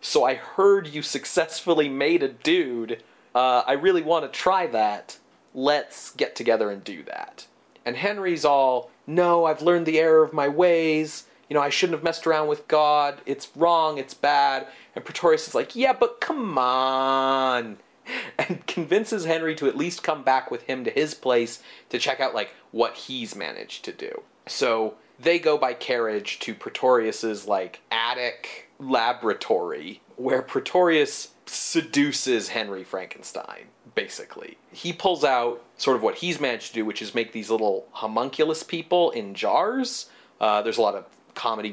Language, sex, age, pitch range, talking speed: English, male, 30-49, 130-195 Hz, 165 wpm